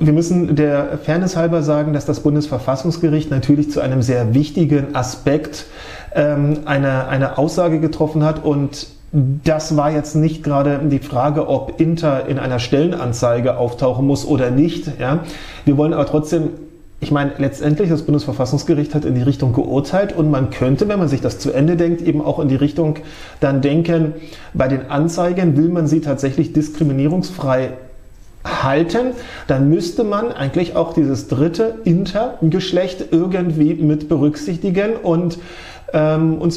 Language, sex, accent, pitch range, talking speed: German, male, German, 145-170 Hz, 150 wpm